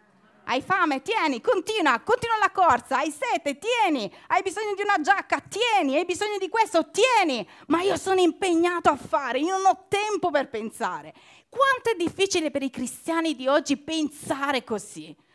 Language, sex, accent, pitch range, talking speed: Italian, female, native, 210-335 Hz, 170 wpm